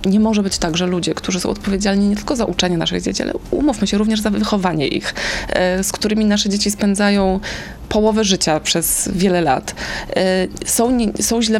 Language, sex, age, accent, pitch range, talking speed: Polish, female, 20-39, native, 180-215 Hz, 180 wpm